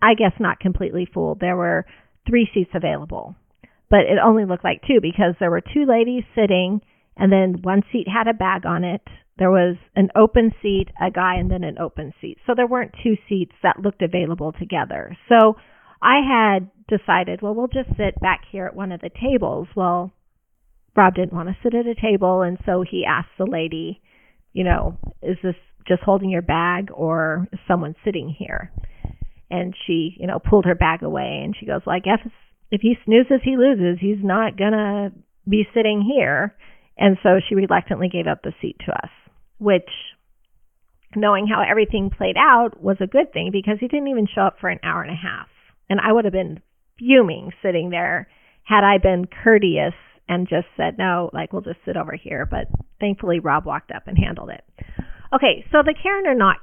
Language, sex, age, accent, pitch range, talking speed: English, female, 40-59, American, 180-220 Hz, 200 wpm